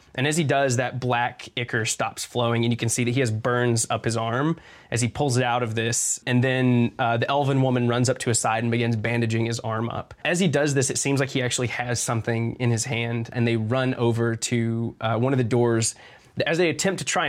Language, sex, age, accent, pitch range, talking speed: English, male, 20-39, American, 115-130 Hz, 255 wpm